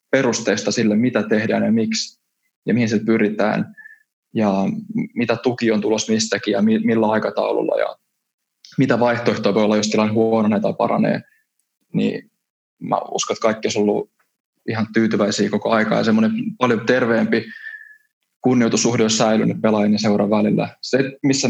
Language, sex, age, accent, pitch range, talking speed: Finnish, male, 20-39, native, 110-135 Hz, 150 wpm